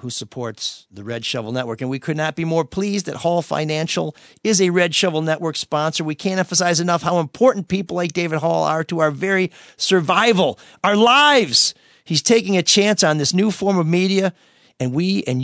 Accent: American